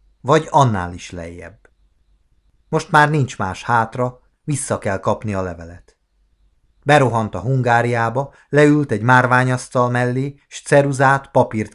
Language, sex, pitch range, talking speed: Hungarian, male, 90-130 Hz, 125 wpm